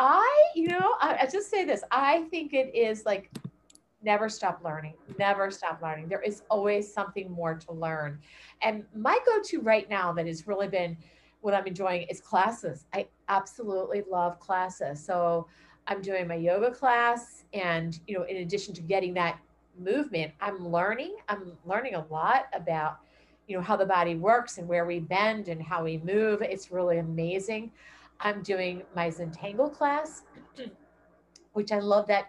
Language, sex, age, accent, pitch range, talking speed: English, female, 40-59, American, 175-235 Hz, 170 wpm